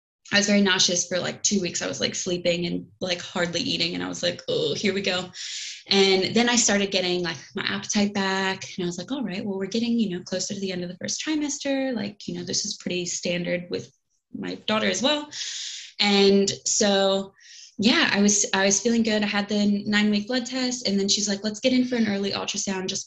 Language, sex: English, female